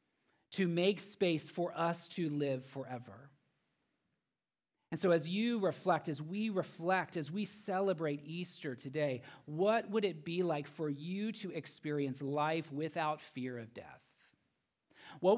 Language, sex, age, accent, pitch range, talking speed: English, male, 40-59, American, 125-170 Hz, 140 wpm